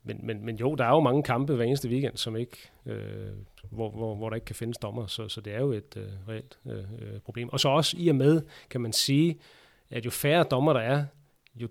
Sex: male